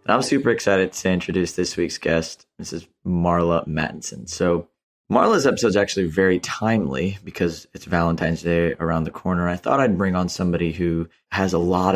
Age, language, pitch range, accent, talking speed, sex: 30-49, English, 85-95 Hz, American, 180 wpm, male